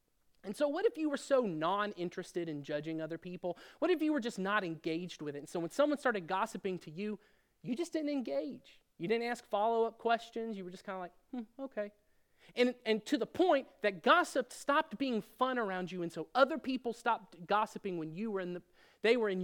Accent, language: American, English